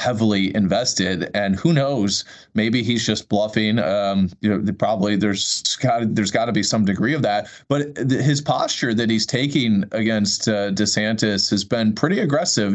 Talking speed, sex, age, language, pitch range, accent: 170 wpm, male, 30-49, English, 110-155 Hz, American